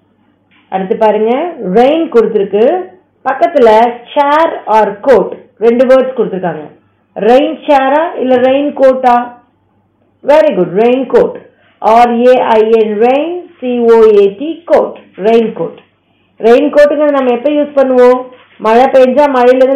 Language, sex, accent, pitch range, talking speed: Tamil, female, native, 225-290 Hz, 60 wpm